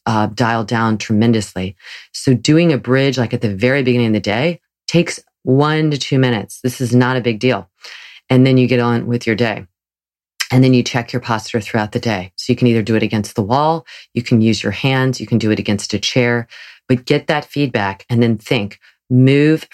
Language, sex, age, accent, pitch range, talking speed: English, female, 40-59, American, 110-130 Hz, 220 wpm